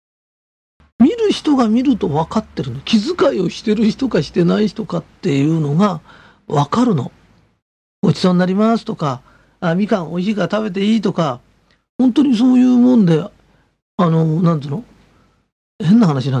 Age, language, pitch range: 40-59, Japanese, 160-245 Hz